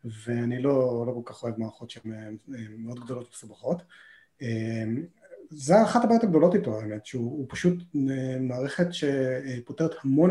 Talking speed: 130 wpm